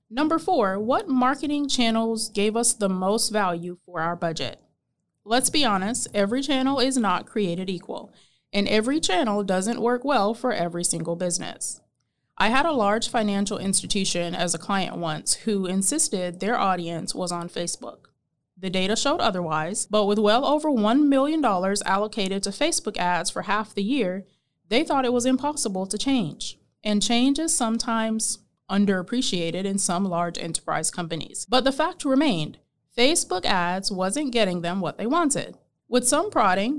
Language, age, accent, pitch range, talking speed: English, 20-39, American, 185-255 Hz, 160 wpm